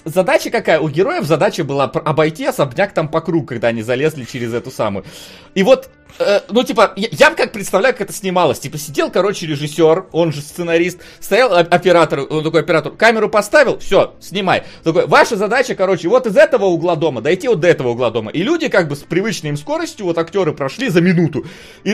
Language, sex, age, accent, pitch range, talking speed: Russian, male, 30-49, native, 155-220 Hz, 200 wpm